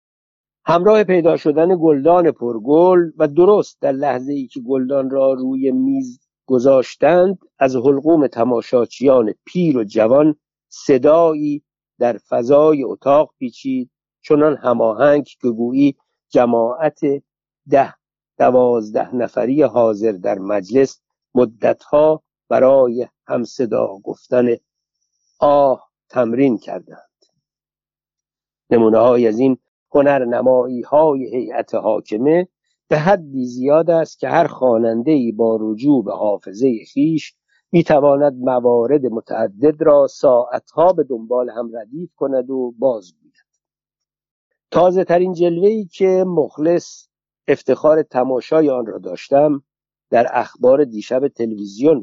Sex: male